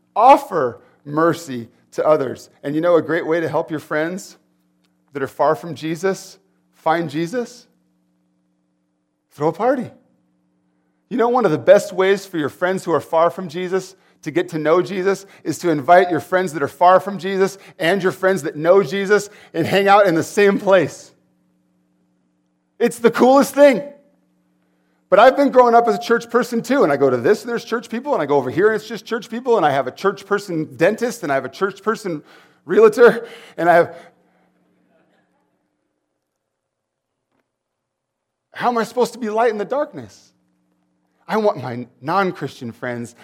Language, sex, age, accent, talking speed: English, male, 40-59, American, 185 wpm